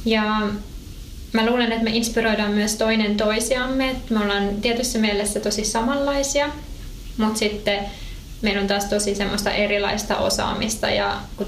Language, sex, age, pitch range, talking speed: Finnish, female, 20-39, 200-230 Hz, 135 wpm